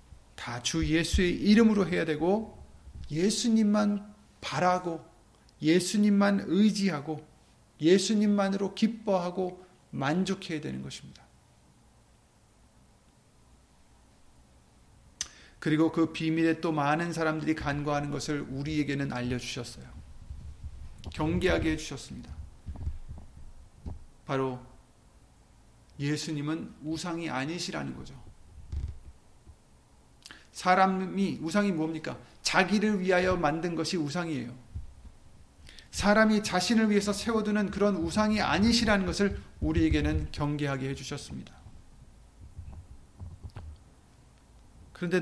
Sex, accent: male, native